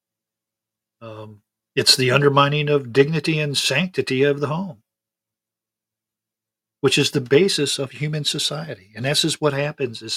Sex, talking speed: male, 140 wpm